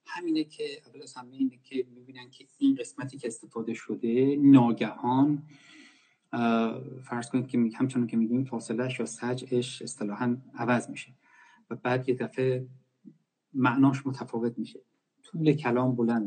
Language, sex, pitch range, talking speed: Persian, male, 120-145 Hz, 145 wpm